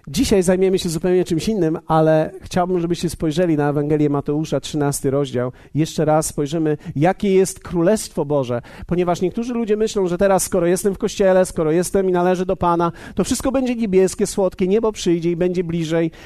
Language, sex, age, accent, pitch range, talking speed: Polish, male, 40-59, native, 165-215 Hz, 175 wpm